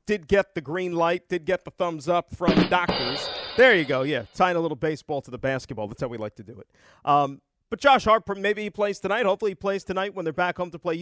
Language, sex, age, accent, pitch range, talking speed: English, male, 40-59, American, 155-205 Hz, 265 wpm